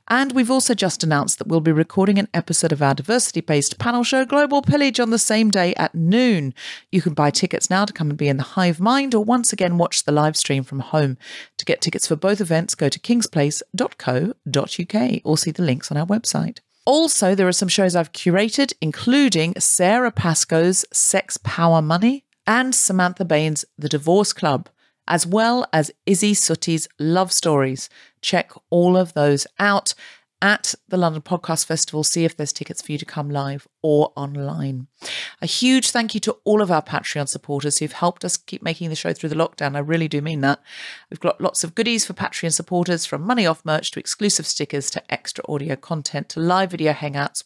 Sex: female